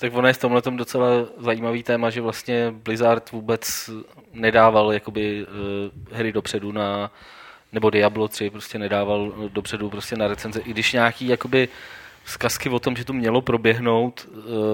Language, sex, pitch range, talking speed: Czech, male, 105-115 Hz, 155 wpm